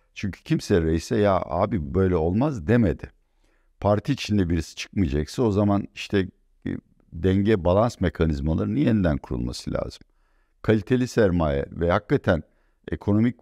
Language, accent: Turkish, native